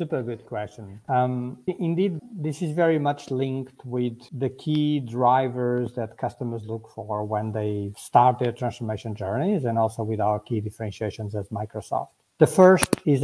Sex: male